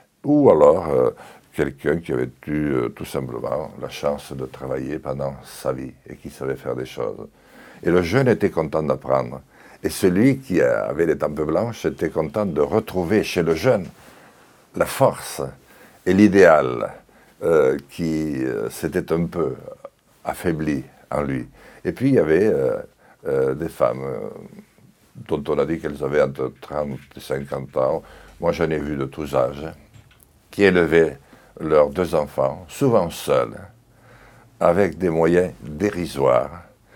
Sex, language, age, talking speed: male, French, 60-79, 155 wpm